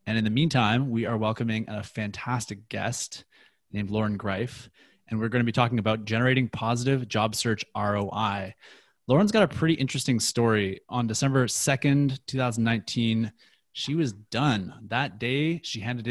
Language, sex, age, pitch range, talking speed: English, male, 20-39, 105-130 Hz, 155 wpm